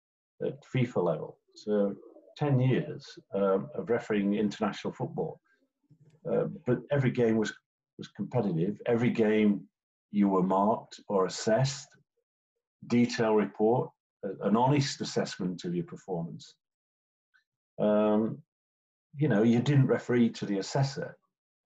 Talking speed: 115 wpm